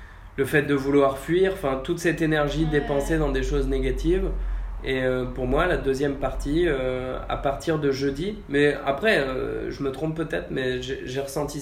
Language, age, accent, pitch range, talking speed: French, 20-39, French, 130-145 Hz, 190 wpm